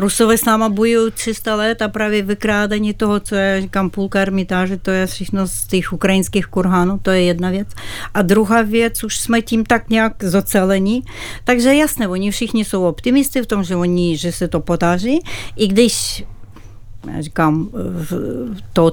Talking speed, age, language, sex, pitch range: 170 wpm, 60-79, Czech, female, 155-210 Hz